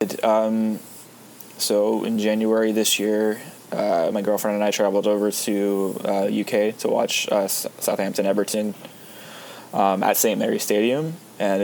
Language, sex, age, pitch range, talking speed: English, male, 20-39, 100-105 Hz, 130 wpm